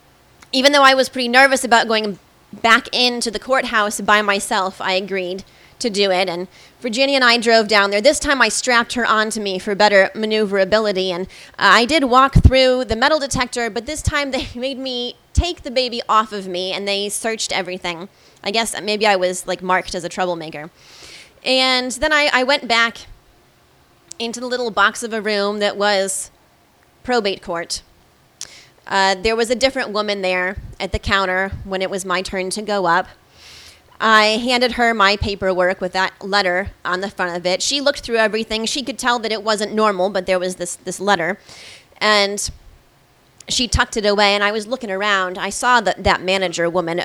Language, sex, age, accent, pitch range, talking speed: English, female, 20-39, American, 185-235 Hz, 195 wpm